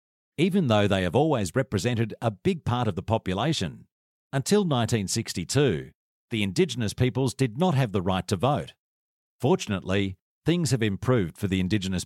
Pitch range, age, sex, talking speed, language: 100-130 Hz, 50-69, male, 155 wpm, English